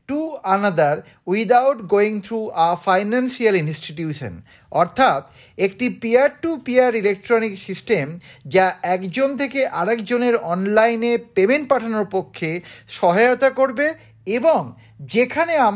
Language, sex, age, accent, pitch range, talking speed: Bengali, male, 50-69, native, 175-245 Hz, 90 wpm